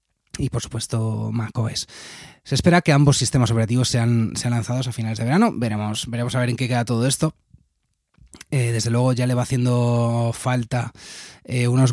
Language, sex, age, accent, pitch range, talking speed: Spanish, male, 20-39, Spanish, 115-130 Hz, 180 wpm